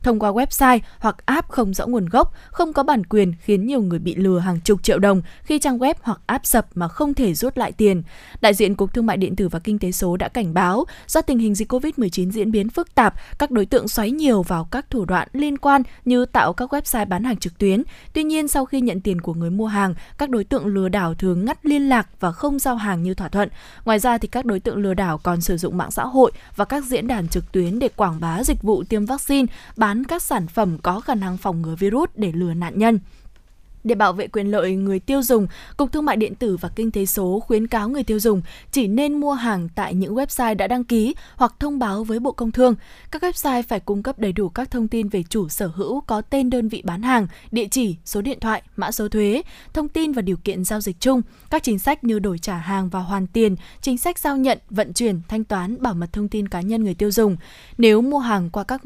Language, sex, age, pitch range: Vietnamese, female, 20-39, 195-255 Hz